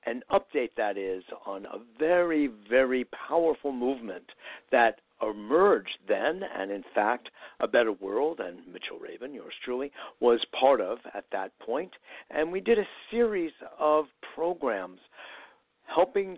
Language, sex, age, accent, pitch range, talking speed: English, male, 60-79, American, 110-155 Hz, 140 wpm